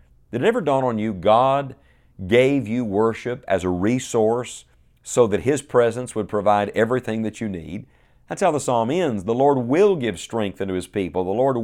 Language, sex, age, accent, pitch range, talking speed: English, male, 50-69, American, 100-135 Hz, 195 wpm